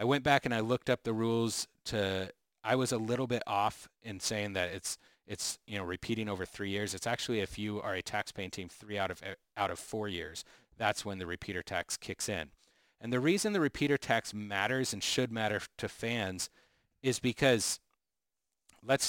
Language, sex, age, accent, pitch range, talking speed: English, male, 40-59, American, 100-125 Hz, 200 wpm